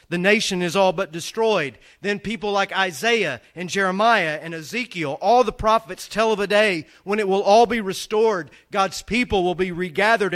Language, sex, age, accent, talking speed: English, male, 40-59, American, 185 wpm